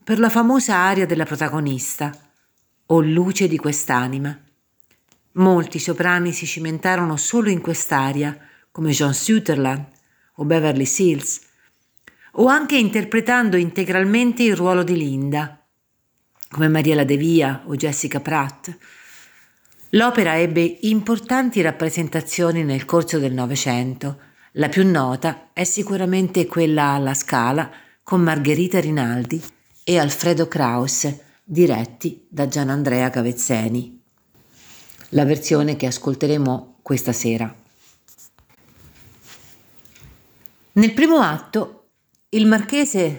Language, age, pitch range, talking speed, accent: Italian, 50-69, 140-180 Hz, 105 wpm, native